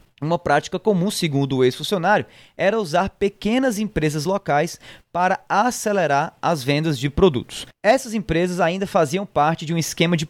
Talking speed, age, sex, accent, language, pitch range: 150 wpm, 20-39, male, Brazilian, Portuguese, 145-195 Hz